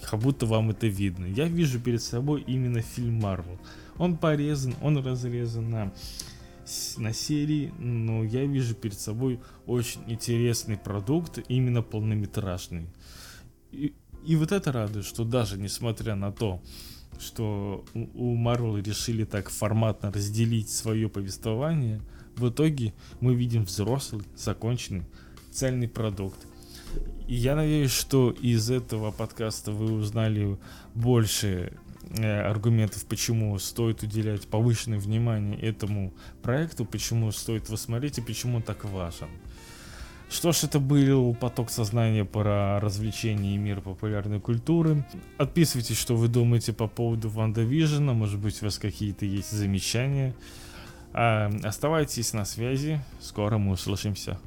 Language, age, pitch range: Russian, 20-39, 105-120 Hz